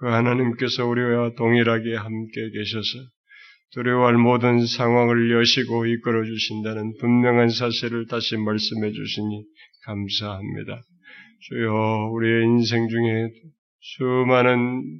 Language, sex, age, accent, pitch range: Korean, male, 30-49, native, 115-135 Hz